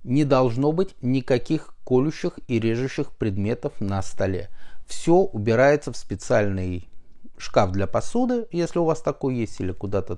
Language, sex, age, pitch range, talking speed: Russian, male, 30-49, 100-150 Hz, 140 wpm